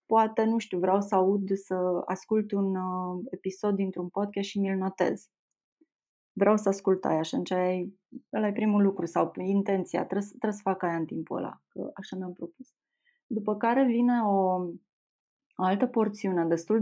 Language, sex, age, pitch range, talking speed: Romanian, female, 20-39, 185-220 Hz, 160 wpm